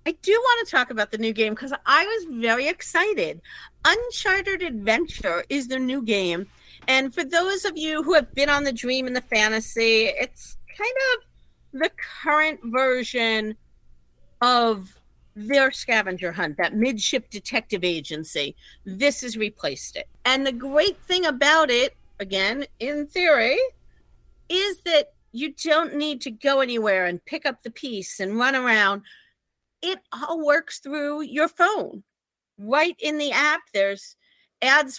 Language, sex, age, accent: English, female, 50-69, American